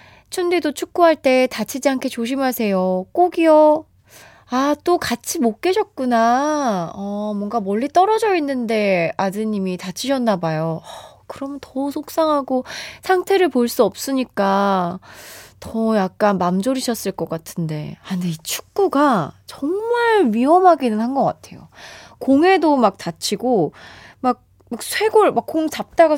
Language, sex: Korean, female